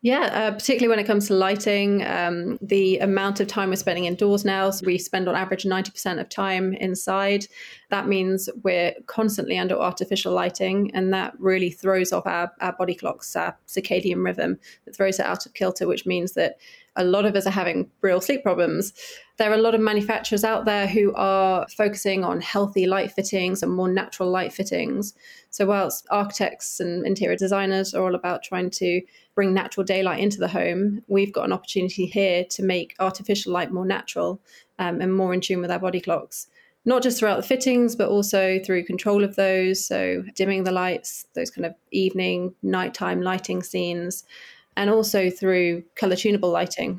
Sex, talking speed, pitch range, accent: female, 190 wpm, 180-205 Hz, British